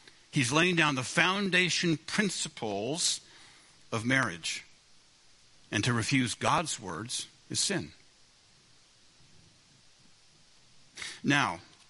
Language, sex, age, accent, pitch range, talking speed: English, male, 60-79, American, 125-165 Hz, 80 wpm